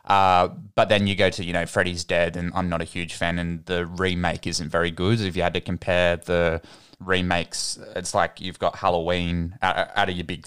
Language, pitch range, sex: English, 85-95 Hz, male